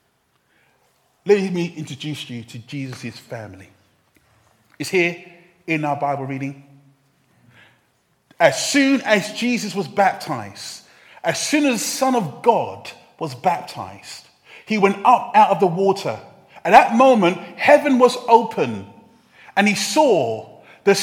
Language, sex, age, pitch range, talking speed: English, male, 30-49, 175-275 Hz, 130 wpm